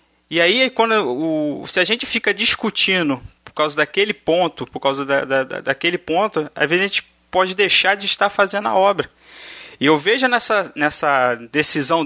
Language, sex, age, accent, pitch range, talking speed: Portuguese, male, 20-39, Brazilian, 150-210 Hz, 180 wpm